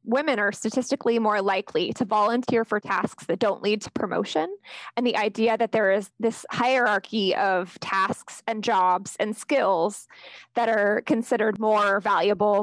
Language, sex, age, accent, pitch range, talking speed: English, female, 20-39, American, 210-245 Hz, 155 wpm